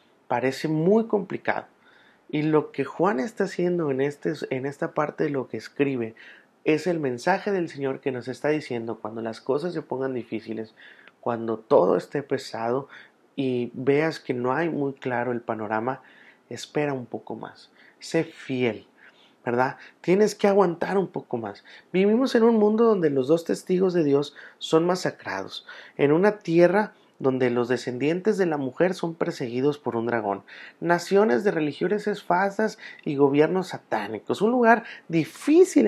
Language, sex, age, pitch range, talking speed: Spanish, male, 30-49, 125-175 Hz, 160 wpm